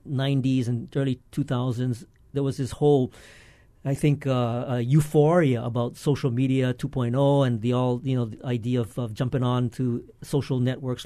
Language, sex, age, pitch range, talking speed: English, male, 50-69, 125-160 Hz, 170 wpm